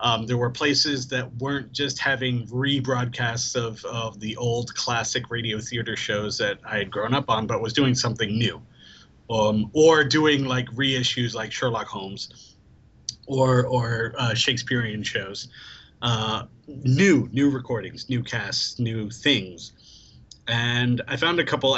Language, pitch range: English, 110-130 Hz